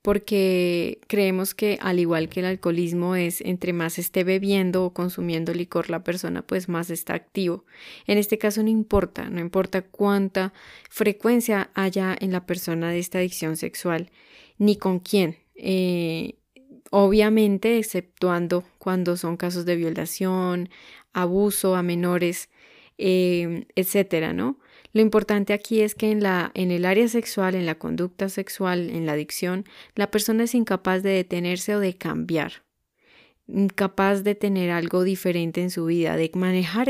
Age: 20-39